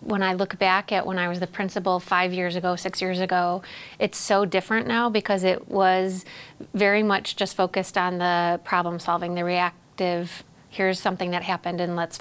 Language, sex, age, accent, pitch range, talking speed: English, female, 30-49, American, 175-195 Hz, 190 wpm